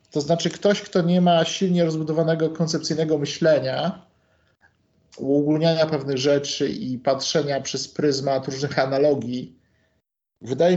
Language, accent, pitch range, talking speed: Polish, native, 140-170 Hz, 110 wpm